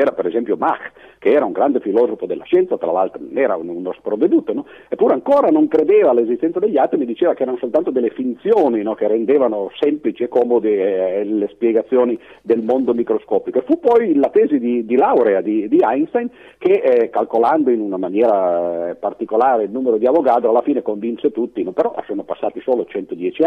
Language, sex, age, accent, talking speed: Italian, male, 50-69, native, 190 wpm